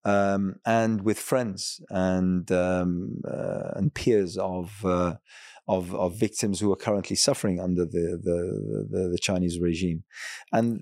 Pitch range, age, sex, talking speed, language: 95-105 Hz, 30-49, male, 145 wpm, English